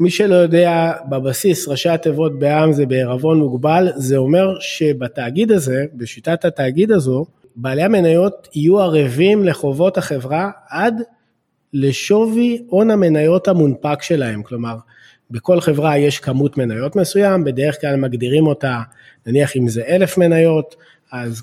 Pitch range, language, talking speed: 130-180 Hz, Hebrew, 130 wpm